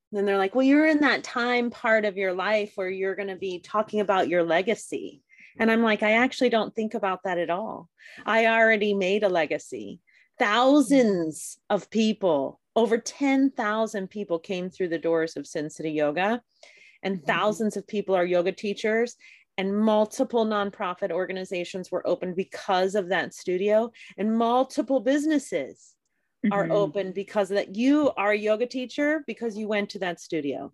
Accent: American